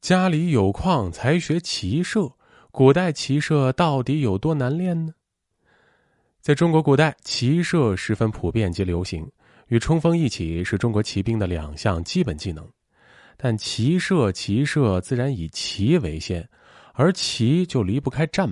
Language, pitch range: Chinese, 95-150 Hz